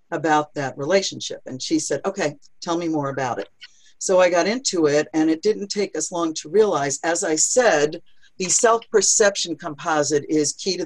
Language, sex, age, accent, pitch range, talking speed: English, female, 50-69, American, 155-210 Hz, 190 wpm